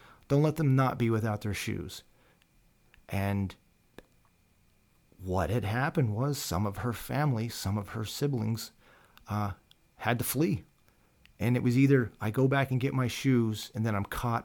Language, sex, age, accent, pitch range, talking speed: English, male, 40-59, American, 95-120 Hz, 165 wpm